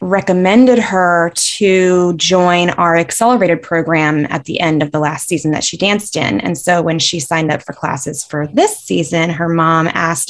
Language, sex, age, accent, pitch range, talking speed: English, female, 20-39, American, 165-235 Hz, 185 wpm